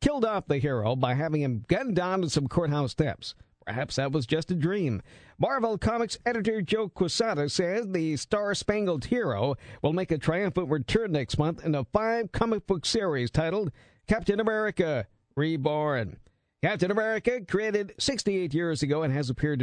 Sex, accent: male, American